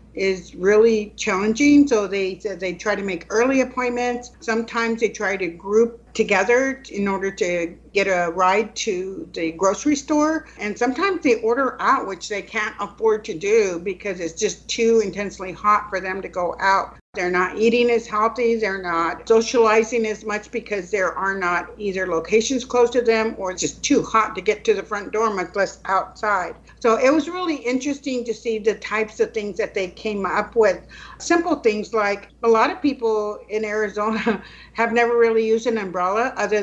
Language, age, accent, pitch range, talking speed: English, 50-69, American, 195-230 Hz, 190 wpm